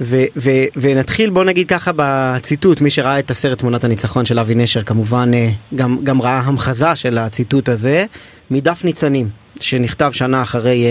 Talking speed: 160 wpm